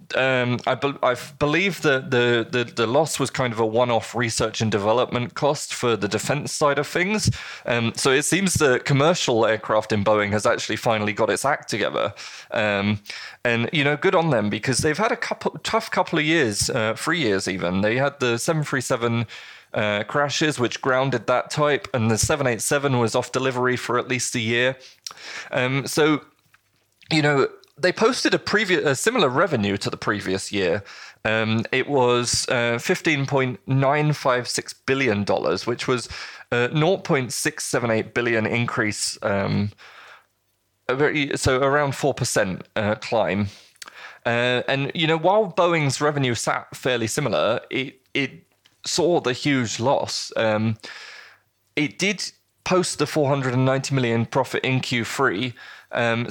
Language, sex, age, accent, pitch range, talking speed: English, male, 20-39, British, 115-145 Hz, 150 wpm